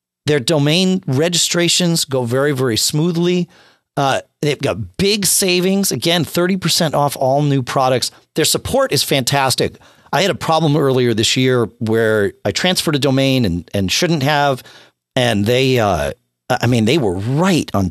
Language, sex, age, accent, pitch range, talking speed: English, male, 40-59, American, 125-180 Hz, 160 wpm